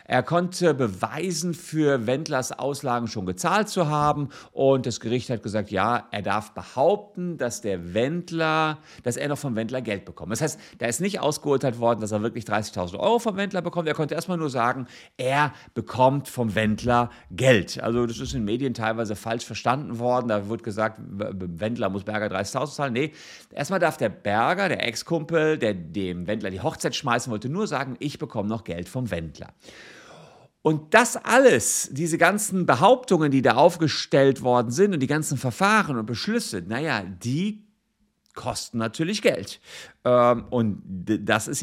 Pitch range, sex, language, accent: 105-155 Hz, male, German, German